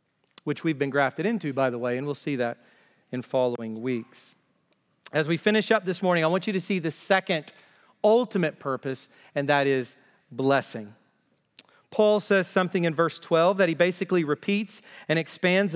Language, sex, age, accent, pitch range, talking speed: English, male, 40-59, American, 160-220 Hz, 175 wpm